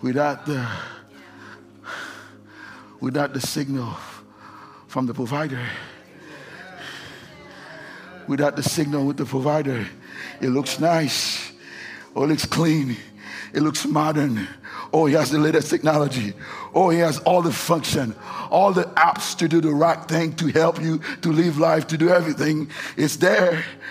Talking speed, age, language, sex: 140 wpm, 60-79, English, male